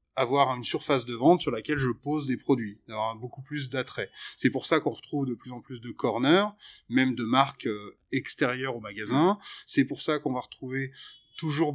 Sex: male